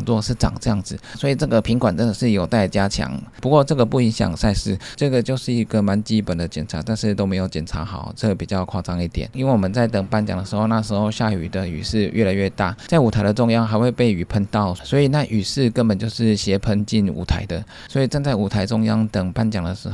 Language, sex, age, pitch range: Chinese, male, 20-39, 95-115 Hz